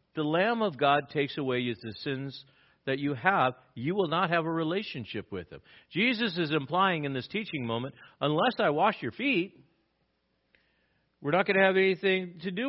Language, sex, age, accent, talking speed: English, male, 50-69, American, 190 wpm